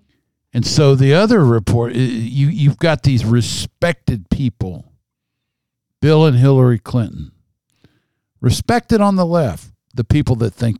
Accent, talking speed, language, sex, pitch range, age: American, 120 wpm, English, male, 95-130 Hz, 60-79